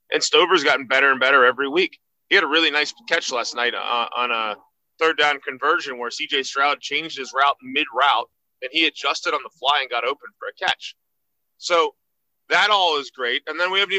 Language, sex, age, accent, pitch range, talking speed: English, male, 20-39, American, 150-240 Hz, 210 wpm